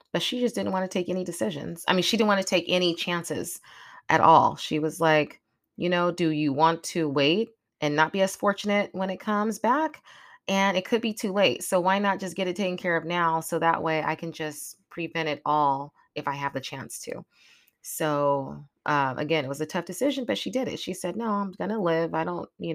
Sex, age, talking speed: female, 30-49, 245 wpm